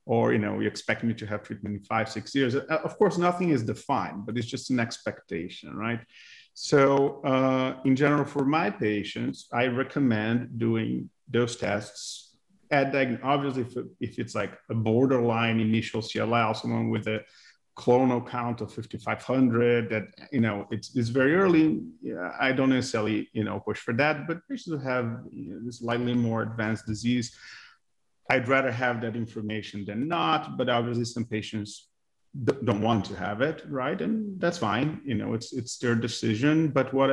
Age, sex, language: 40-59, male, English